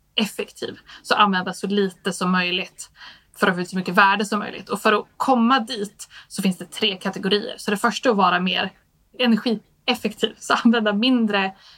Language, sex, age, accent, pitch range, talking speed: Swedish, female, 20-39, native, 190-220 Hz, 190 wpm